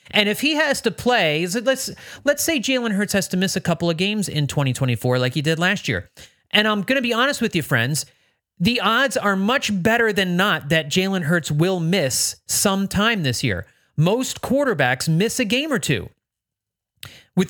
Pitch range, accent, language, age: 140-220 Hz, American, English, 30-49